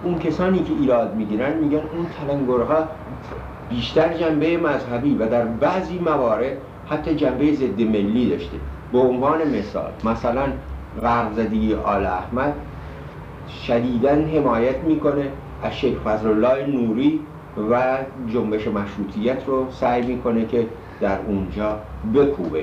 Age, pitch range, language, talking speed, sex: 60-79, 105-145 Hz, Persian, 120 wpm, male